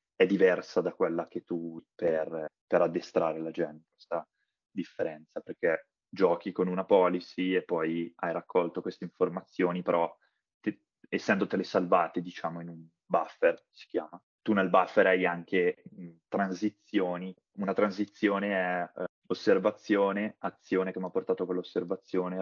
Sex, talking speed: male, 145 wpm